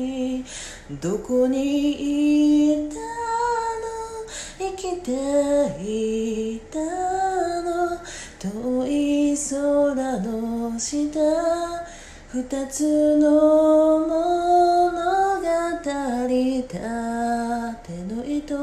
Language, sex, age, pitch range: Japanese, female, 20-39, 240-300 Hz